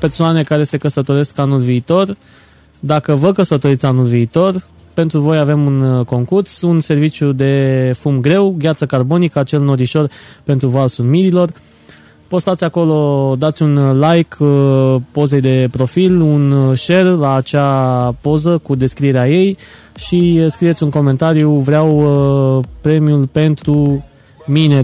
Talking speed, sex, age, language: 125 wpm, male, 20-39, Romanian